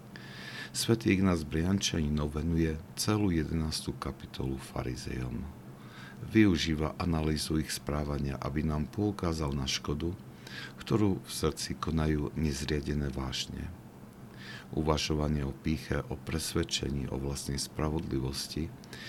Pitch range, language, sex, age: 65-80 Hz, Slovak, male, 50-69